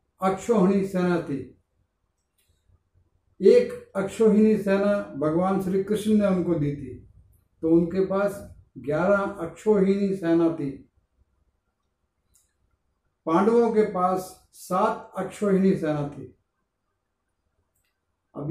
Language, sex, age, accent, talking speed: Hindi, male, 50-69, native, 90 wpm